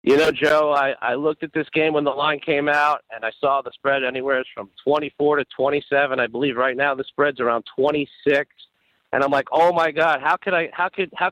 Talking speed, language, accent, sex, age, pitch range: 255 wpm, English, American, male, 50-69, 140-175 Hz